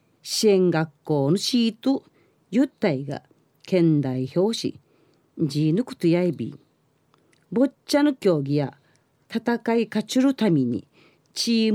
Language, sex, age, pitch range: Japanese, female, 40-59, 155-240 Hz